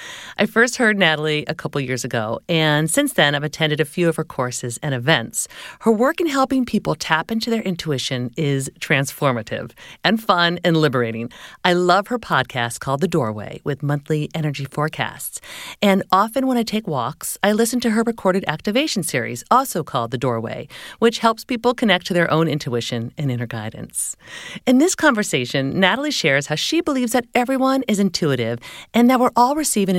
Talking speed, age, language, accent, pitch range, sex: 180 wpm, 40-59, English, American, 145-230 Hz, female